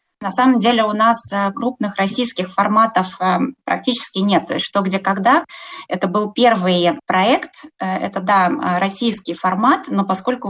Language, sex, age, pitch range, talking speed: Russian, female, 20-39, 195-240 Hz, 150 wpm